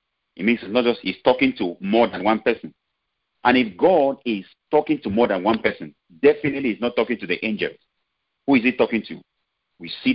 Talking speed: 215 wpm